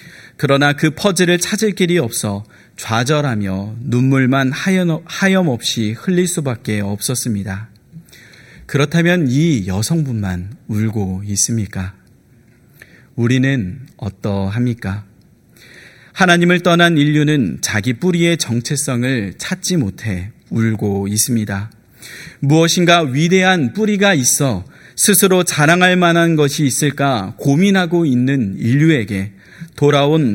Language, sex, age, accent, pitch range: Korean, male, 40-59, native, 110-165 Hz